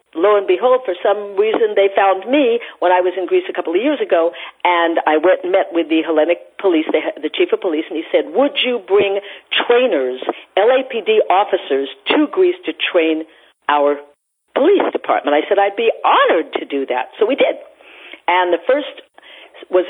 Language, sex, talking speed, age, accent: English, female, 190 wpm, 50-69, American